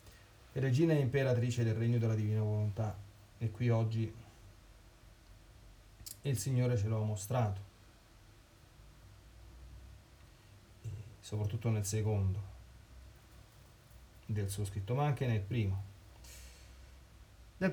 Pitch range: 100-125 Hz